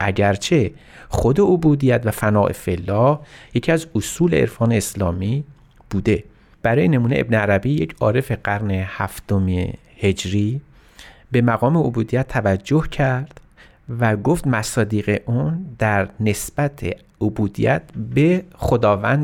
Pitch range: 100-140 Hz